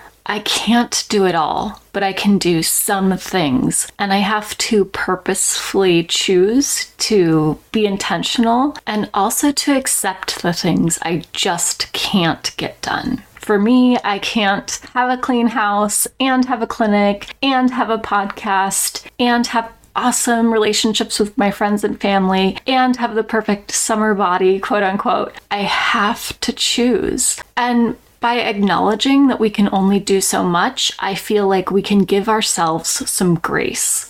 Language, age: English, 30-49